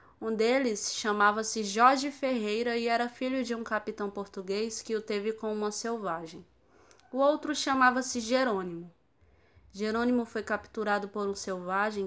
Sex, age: female, 20-39